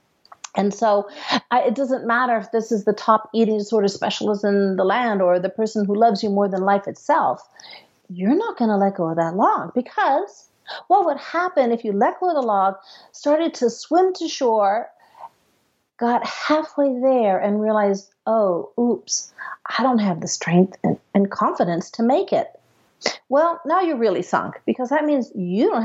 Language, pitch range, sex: English, 210-285 Hz, female